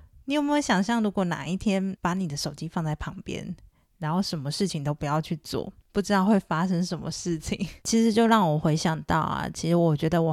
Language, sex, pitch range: Chinese, female, 165-200 Hz